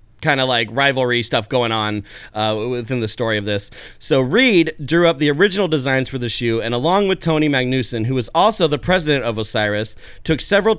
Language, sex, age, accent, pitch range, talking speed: English, male, 30-49, American, 120-155 Hz, 205 wpm